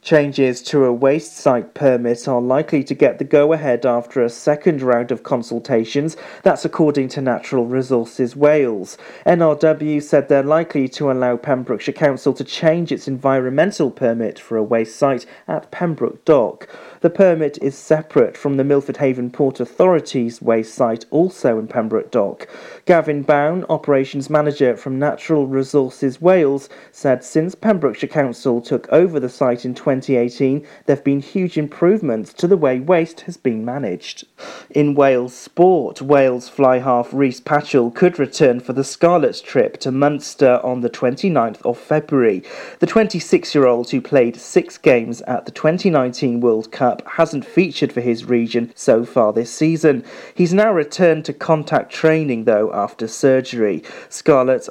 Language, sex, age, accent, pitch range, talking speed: English, male, 40-59, British, 125-155 Hz, 155 wpm